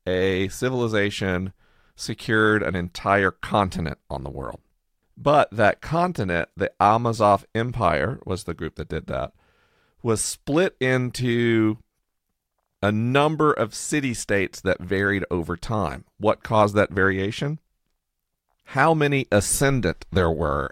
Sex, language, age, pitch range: male, English, 40-59, 90-115 Hz